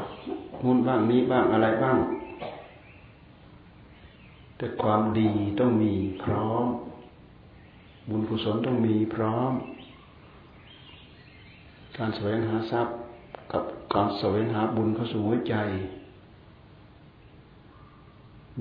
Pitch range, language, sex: 110-115 Hz, Thai, male